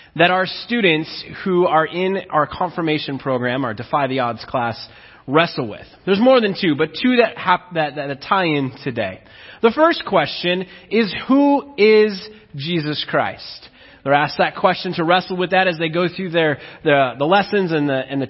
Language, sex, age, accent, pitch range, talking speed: English, male, 30-49, American, 145-215 Hz, 185 wpm